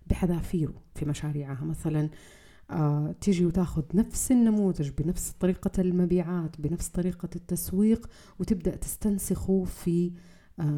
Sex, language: female, Arabic